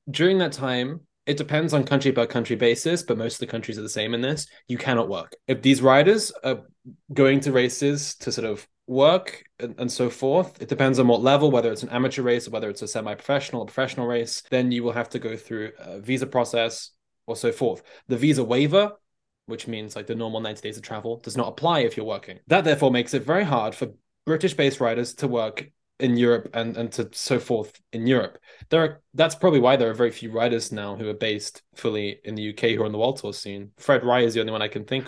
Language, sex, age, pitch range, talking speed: English, male, 10-29, 115-140 Hz, 240 wpm